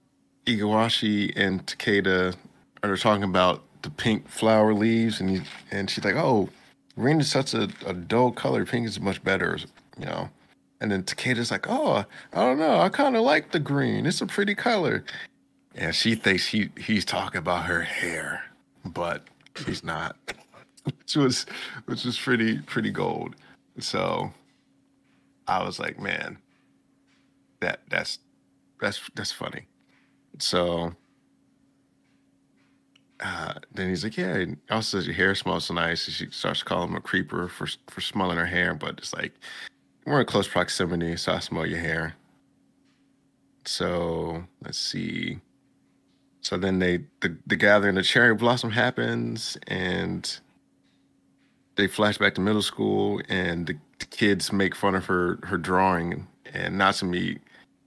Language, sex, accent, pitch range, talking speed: English, male, American, 90-115 Hz, 150 wpm